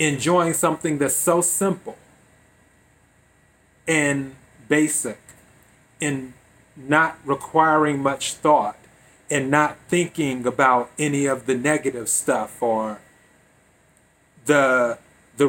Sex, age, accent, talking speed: male, 30-49, American, 95 wpm